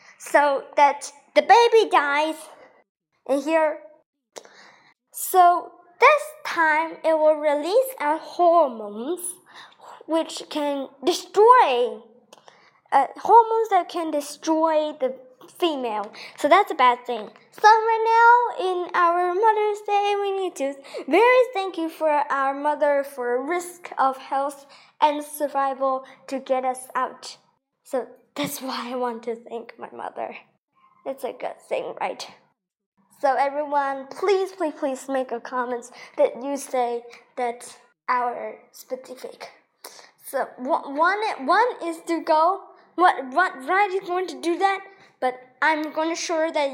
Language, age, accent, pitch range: Chinese, 10-29, American, 255-355 Hz